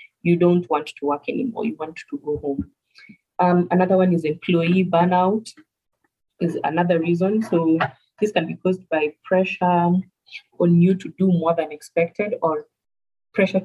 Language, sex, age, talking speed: English, female, 30-49, 160 wpm